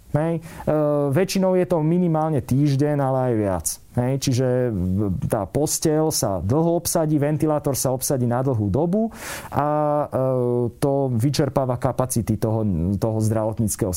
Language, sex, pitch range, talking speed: Slovak, male, 115-150 Hz, 130 wpm